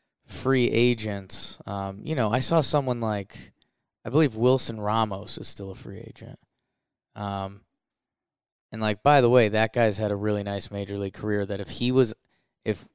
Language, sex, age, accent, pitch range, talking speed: English, male, 20-39, American, 100-120 Hz, 175 wpm